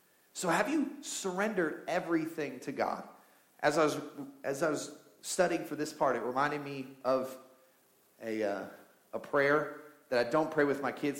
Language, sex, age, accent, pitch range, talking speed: English, male, 40-59, American, 120-150 Hz, 155 wpm